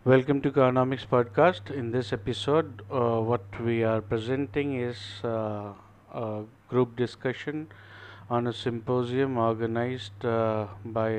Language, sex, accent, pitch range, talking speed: Hindi, male, native, 105-120 Hz, 125 wpm